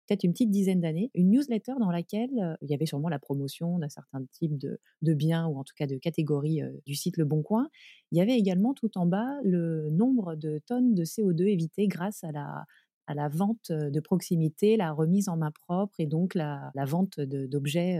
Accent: French